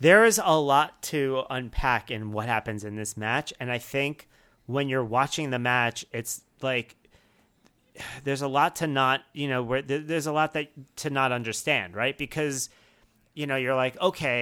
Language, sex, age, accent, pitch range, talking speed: English, male, 40-59, American, 120-150 Hz, 185 wpm